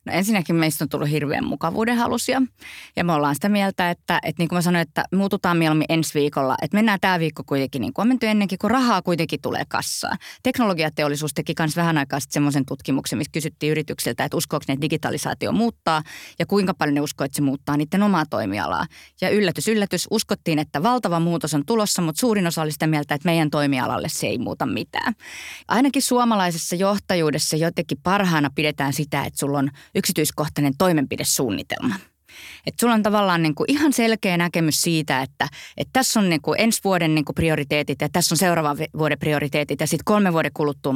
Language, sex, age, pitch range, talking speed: Finnish, female, 20-39, 150-200 Hz, 195 wpm